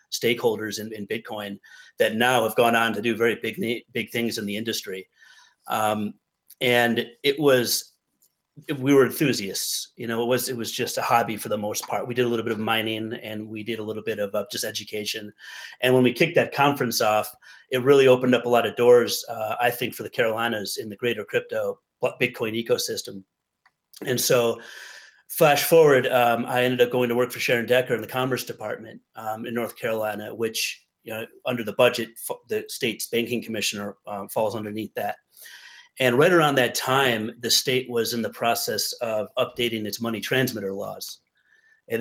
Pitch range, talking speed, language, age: 110-130 Hz, 195 wpm, English, 30-49